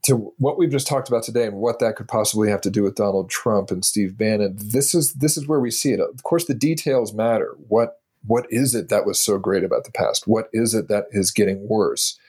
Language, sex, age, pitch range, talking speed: English, male, 40-59, 100-130 Hz, 255 wpm